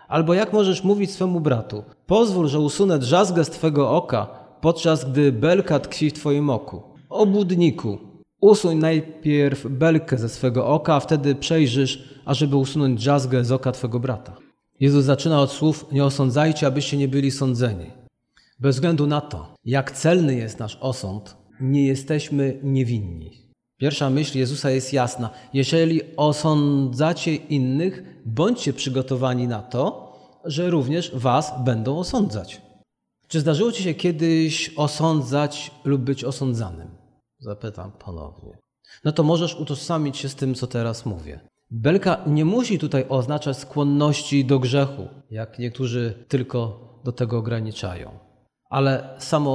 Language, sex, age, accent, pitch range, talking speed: Polish, male, 40-59, native, 125-155 Hz, 135 wpm